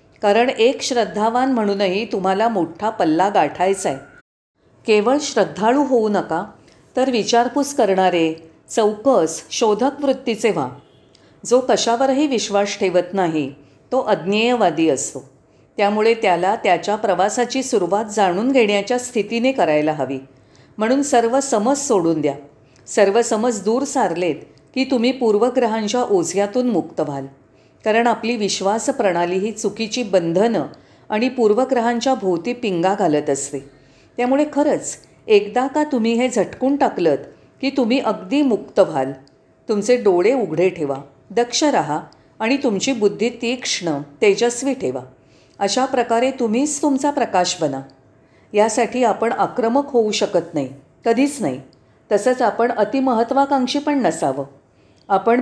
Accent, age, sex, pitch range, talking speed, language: native, 40-59, female, 180-250 Hz, 110 wpm, Marathi